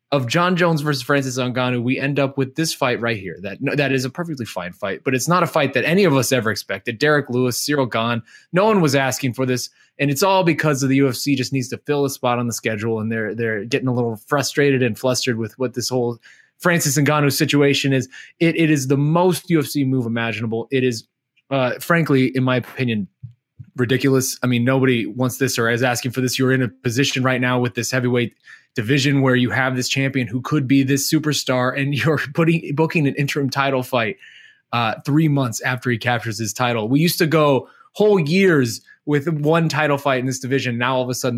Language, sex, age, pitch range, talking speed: English, male, 20-39, 125-140 Hz, 225 wpm